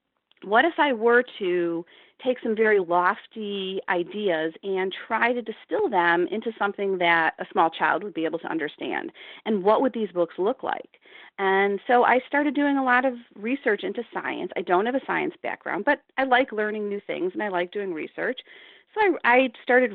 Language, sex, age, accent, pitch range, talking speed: English, female, 40-59, American, 190-250 Hz, 195 wpm